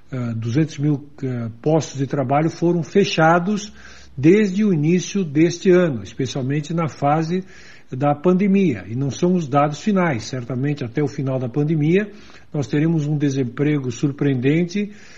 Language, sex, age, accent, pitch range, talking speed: Portuguese, male, 60-79, Brazilian, 140-180 Hz, 135 wpm